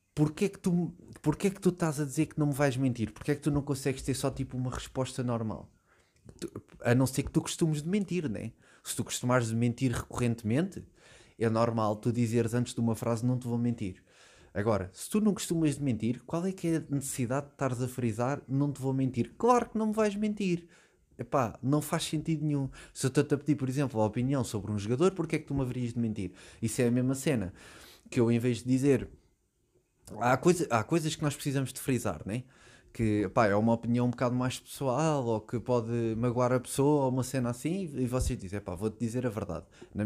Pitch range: 115-150 Hz